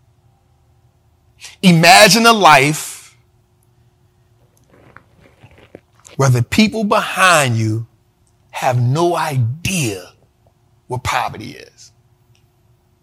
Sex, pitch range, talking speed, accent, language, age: male, 115-145 Hz, 65 wpm, American, English, 40-59